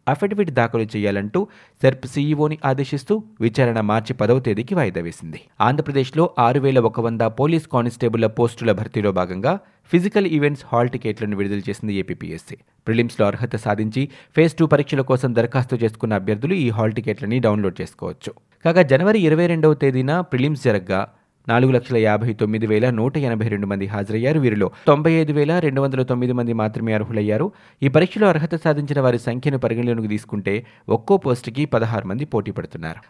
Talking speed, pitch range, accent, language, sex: 85 wpm, 110-145 Hz, native, Telugu, male